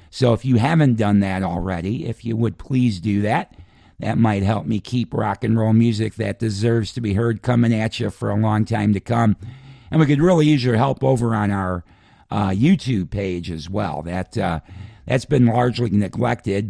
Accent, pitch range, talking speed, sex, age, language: American, 95-115 Hz, 210 wpm, male, 50-69, English